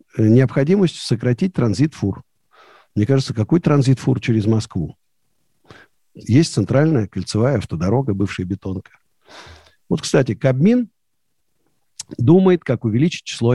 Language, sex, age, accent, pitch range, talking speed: Russian, male, 50-69, native, 105-145 Hz, 95 wpm